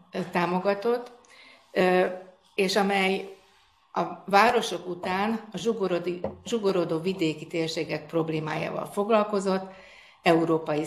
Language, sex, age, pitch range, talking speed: Hungarian, female, 60-79, 165-200 Hz, 70 wpm